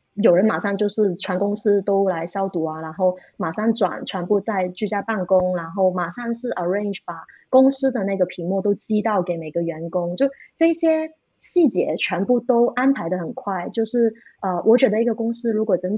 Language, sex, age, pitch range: Chinese, female, 20-39, 185-230 Hz